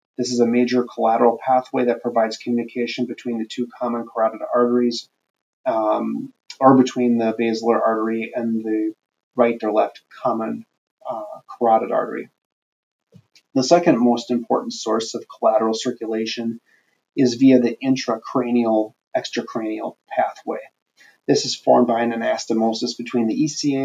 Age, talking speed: 30-49, 130 wpm